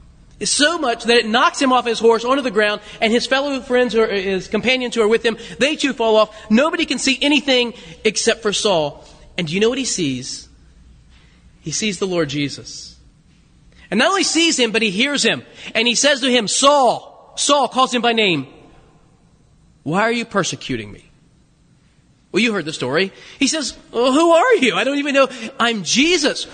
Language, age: English, 30-49